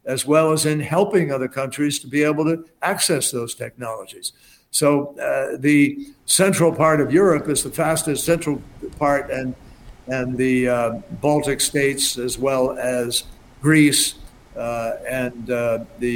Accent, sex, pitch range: American, male, 130-160 Hz